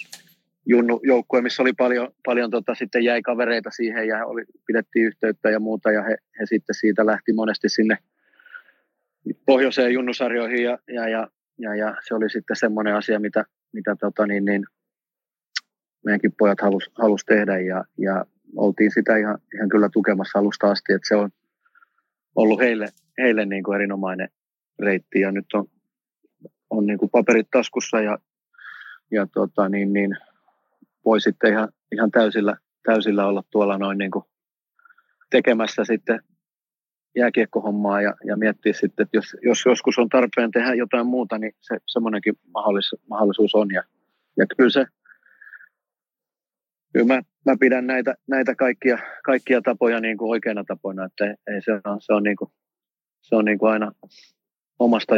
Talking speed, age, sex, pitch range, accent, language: 155 wpm, 30-49, male, 105-120 Hz, native, Finnish